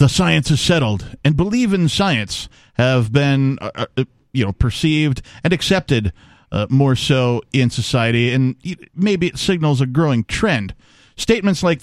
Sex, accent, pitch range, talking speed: male, American, 125-170 Hz, 155 wpm